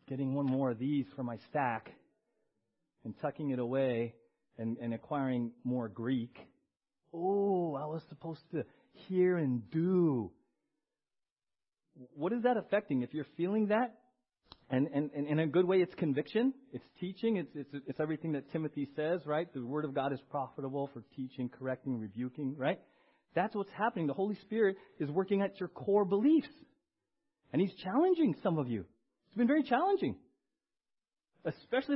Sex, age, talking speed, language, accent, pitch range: male, 30-49, 160 wpm, English, American, 145-230 Hz